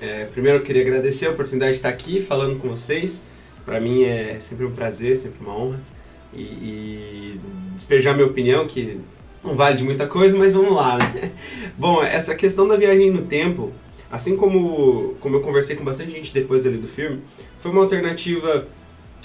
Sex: male